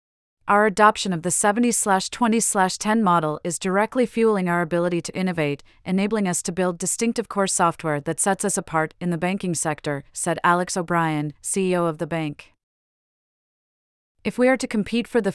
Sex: female